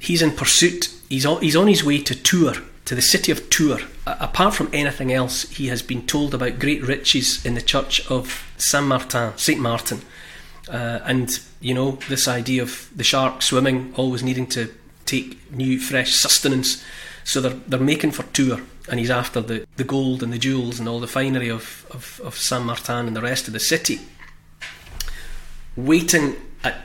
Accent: British